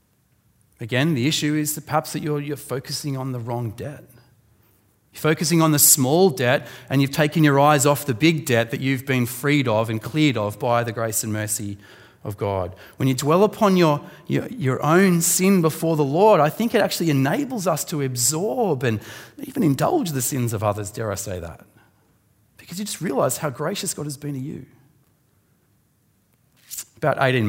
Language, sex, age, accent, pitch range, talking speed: English, male, 30-49, Australian, 110-150 Hz, 190 wpm